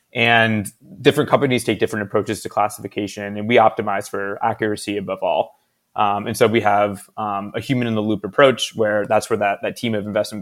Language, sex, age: English, male, 20-39